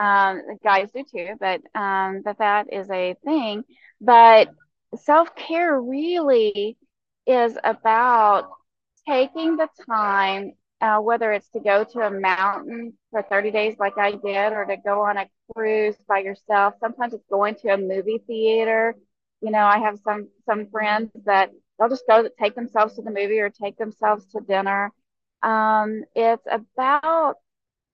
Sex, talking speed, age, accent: female, 155 wpm, 30-49, American